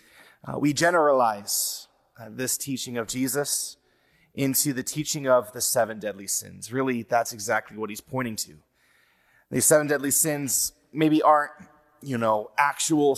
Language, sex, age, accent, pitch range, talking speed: English, male, 30-49, American, 120-155 Hz, 145 wpm